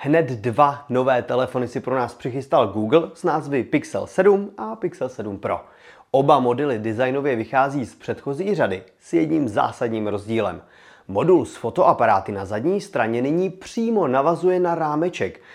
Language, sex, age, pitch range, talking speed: Czech, male, 30-49, 120-170 Hz, 150 wpm